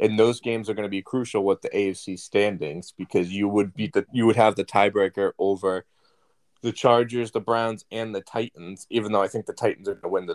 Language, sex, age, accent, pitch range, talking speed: English, male, 20-39, American, 95-120 Hz, 240 wpm